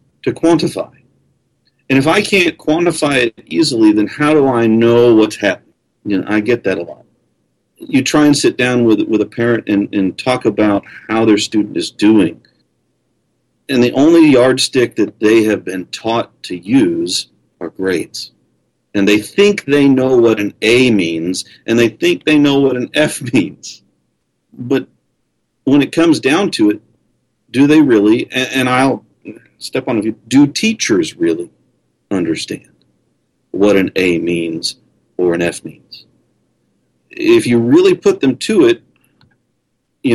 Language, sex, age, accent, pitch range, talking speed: English, male, 40-59, American, 105-150 Hz, 160 wpm